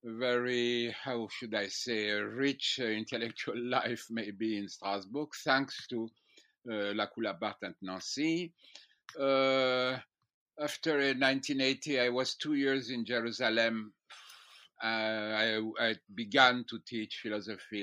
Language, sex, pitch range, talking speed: English, male, 105-130 Hz, 110 wpm